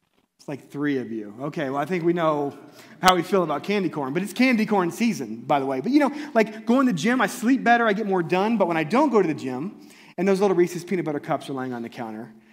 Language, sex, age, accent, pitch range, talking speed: English, male, 30-49, American, 145-215 Hz, 285 wpm